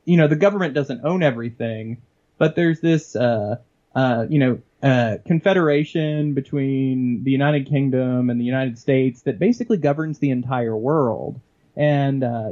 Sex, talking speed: male, 155 wpm